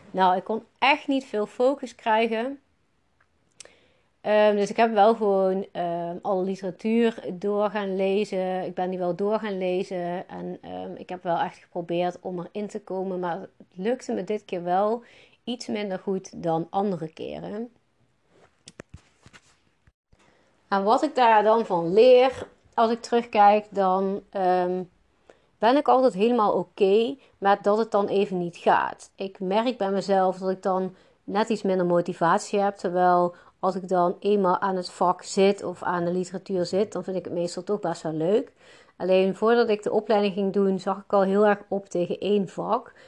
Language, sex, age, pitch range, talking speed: Dutch, female, 30-49, 180-215 Hz, 170 wpm